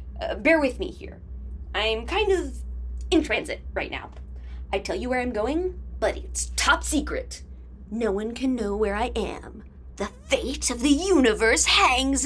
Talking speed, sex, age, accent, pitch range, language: 170 wpm, female, 20-39, American, 180-305 Hz, English